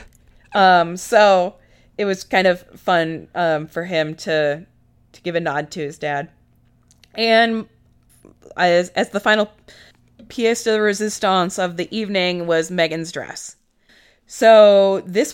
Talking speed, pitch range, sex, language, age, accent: 135 wpm, 170-210 Hz, female, English, 20-39, American